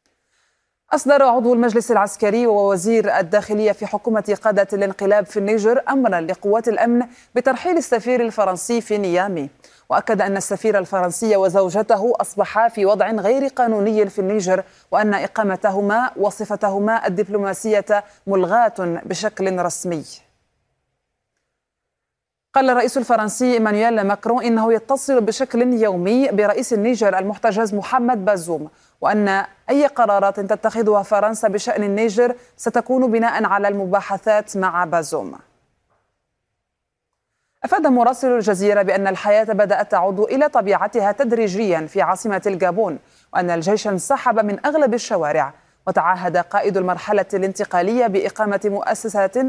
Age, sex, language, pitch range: 30-49, female, Arabic, 195-230 Hz